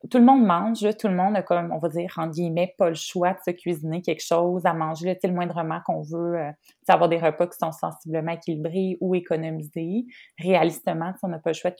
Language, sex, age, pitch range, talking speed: French, female, 20-39, 170-205 Hz, 240 wpm